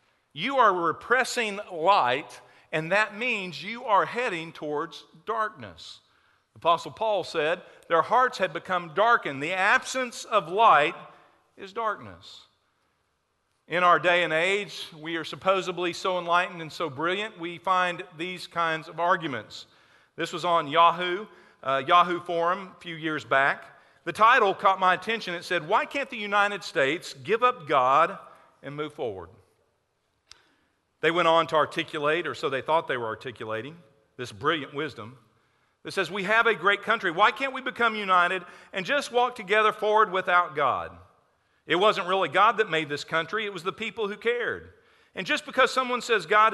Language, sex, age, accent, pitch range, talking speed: English, male, 50-69, American, 165-215 Hz, 165 wpm